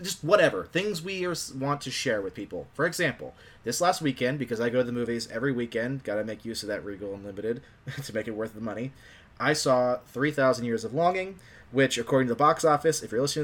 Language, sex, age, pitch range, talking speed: English, male, 20-39, 110-140 Hz, 225 wpm